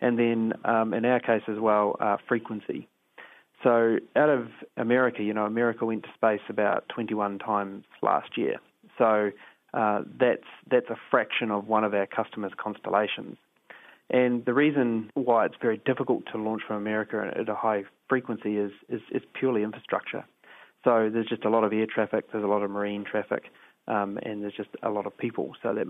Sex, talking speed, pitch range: male, 190 wpm, 105-115 Hz